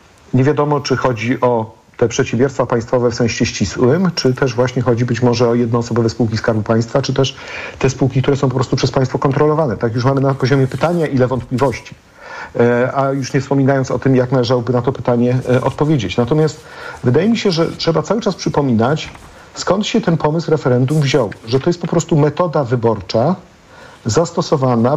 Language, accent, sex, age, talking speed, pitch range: Polish, native, male, 50-69, 185 wpm, 120-150 Hz